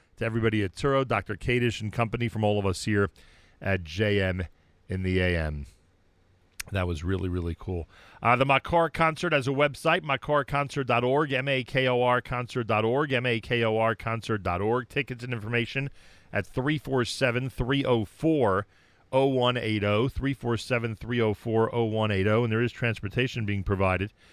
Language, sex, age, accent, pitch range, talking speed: English, male, 40-59, American, 100-130 Hz, 110 wpm